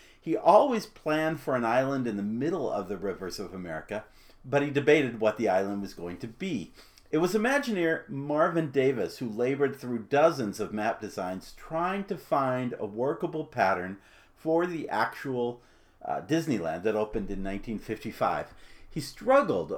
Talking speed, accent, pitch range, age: 160 wpm, American, 105-150 Hz, 50-69